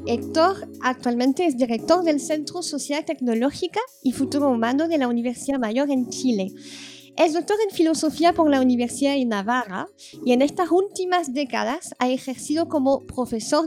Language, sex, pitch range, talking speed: Spanish, female, 255-335 Hz, 155 wpm